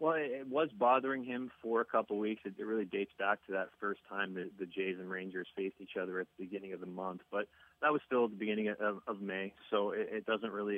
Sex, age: male, 20-39